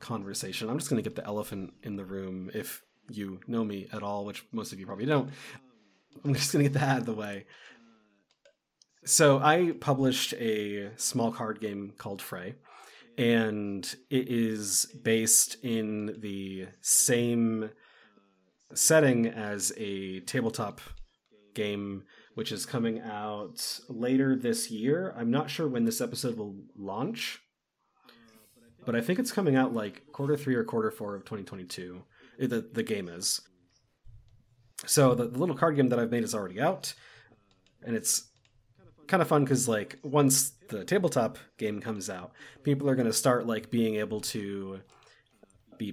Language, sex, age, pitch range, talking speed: English, male, 30-49, 105-130 Hz, 160 wpm